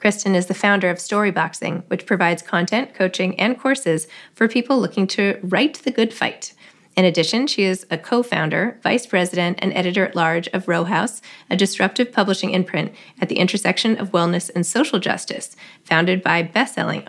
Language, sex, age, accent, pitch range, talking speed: English, female, 20-39, American, 175-215 Hz, 170 wpm